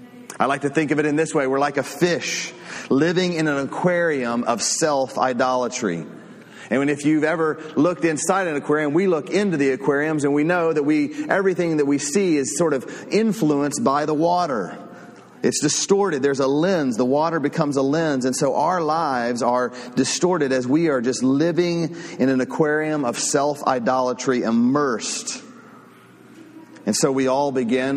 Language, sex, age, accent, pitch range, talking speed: English, male, 30-49, American, 130-170 Hz, 175 wpm